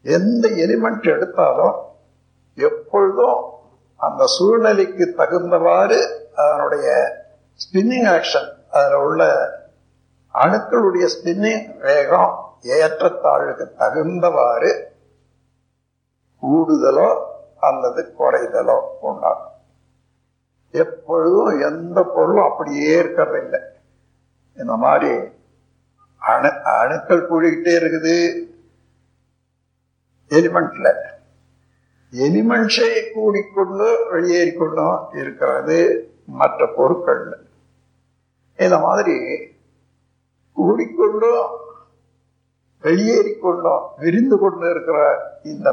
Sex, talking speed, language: male, 60 wpm, Tamil